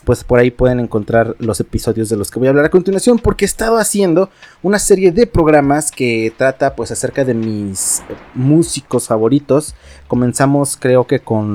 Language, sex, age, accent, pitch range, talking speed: Spanish, male, 30-49, Mexican, 110-150 Hz, 180 wpm